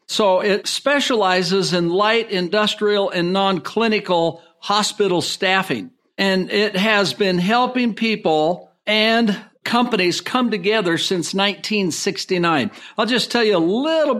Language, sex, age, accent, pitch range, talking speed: English, male, 60-79, American, 180-210 Hz, 120 wpm